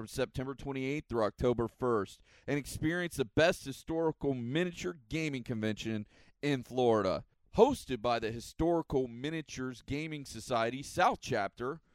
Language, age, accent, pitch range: English, 40-59, American, 120-155 Hz